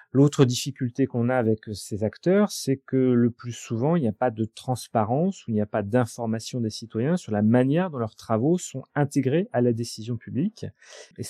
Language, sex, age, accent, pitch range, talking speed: French, male, 30-49, French, 110-135 Hz, 205 wpm